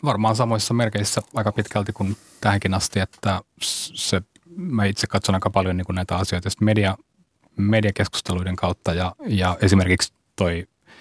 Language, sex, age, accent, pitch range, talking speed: Finnish, male, 30-49, native, 90-105 Hz, 140 wpm